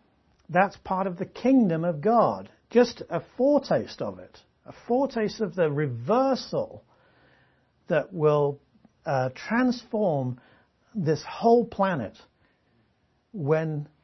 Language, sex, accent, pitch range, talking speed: English, male, British, 140-205 Hz, 105 wpm